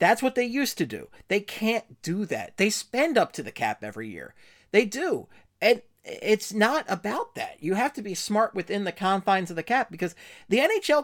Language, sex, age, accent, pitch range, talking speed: English, male, 30-49, American, 155-220 Hz, 210 wpm